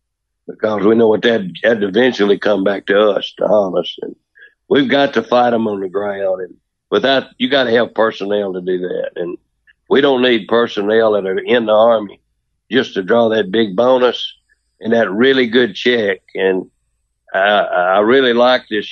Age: 60-79